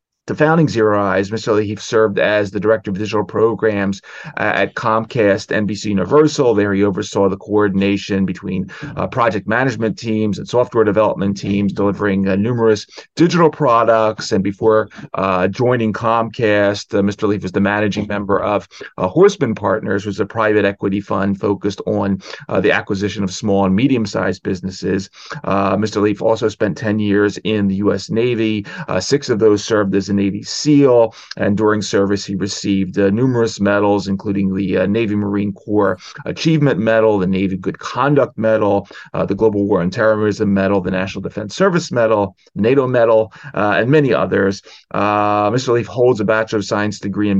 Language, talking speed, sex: English, 175 wpm, male